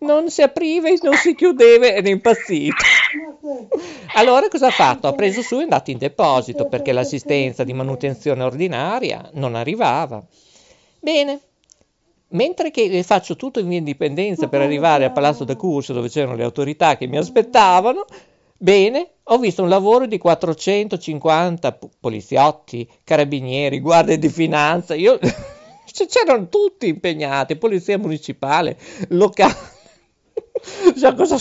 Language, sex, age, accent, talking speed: Italian, male, 50-69, native, 135 wpm